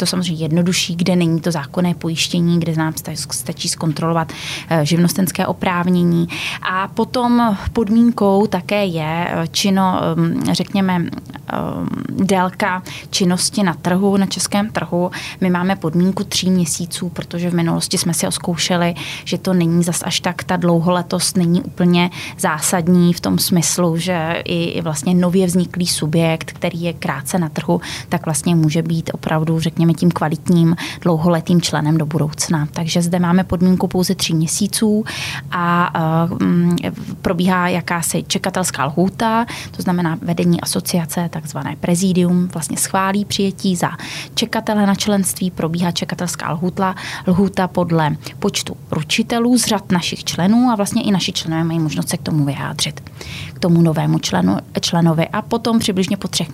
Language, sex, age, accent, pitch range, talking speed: Czech, female, 20-39, native, 165-185 Hz, 140 wpm